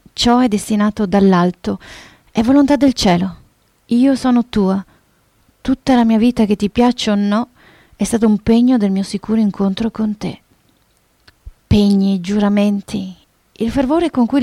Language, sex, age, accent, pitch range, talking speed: Italian, female, 30-49, native, 195-235 Hz, 150 wpm